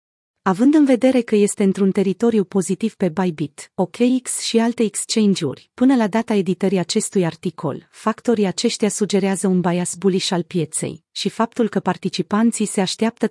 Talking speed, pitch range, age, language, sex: 155 wpm, 185-225 Hz, 30-49, Romanian, female